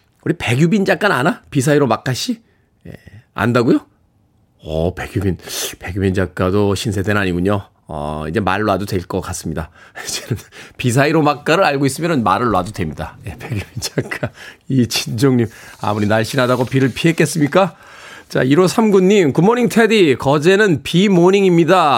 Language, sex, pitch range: Korean, male, 105-160 Hz